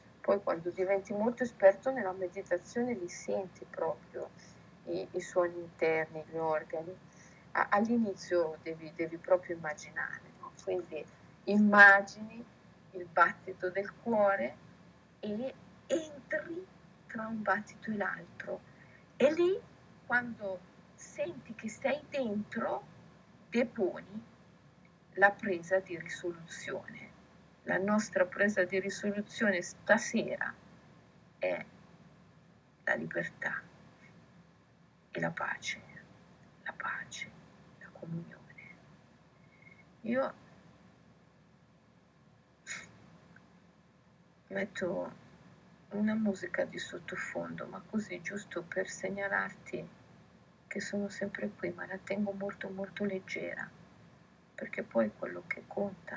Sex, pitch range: female, 175-210 Hz